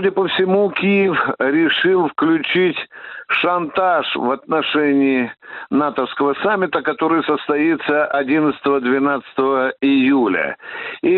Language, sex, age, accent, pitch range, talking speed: Russian, male, 60-79, native, 150-215 Hz, 85 wpm